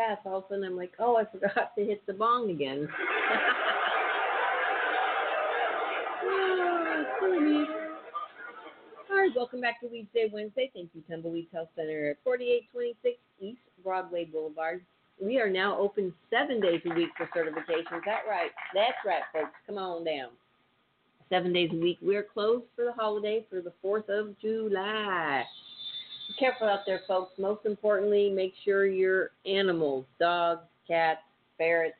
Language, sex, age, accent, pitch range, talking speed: English, female, 50-69, American, 155-205 Hz, 150 wpm